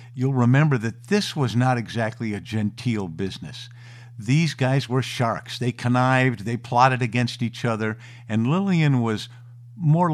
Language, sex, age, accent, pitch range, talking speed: English, male, 50-69, American, 115-130 Hz, 150 wpm